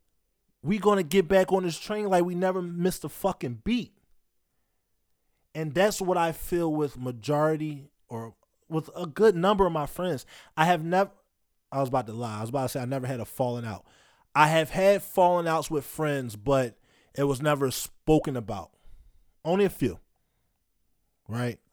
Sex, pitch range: male, 125-180 Hz